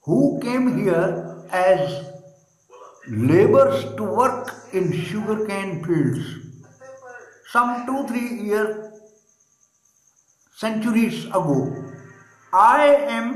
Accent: native